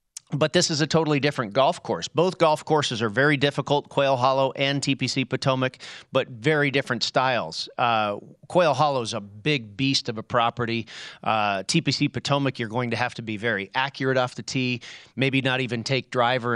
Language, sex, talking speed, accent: English, male, 190 wpm, American